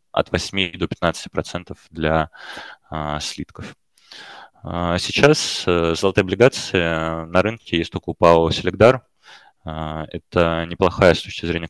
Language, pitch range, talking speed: Russian, 80-95 Hz, 130 wpm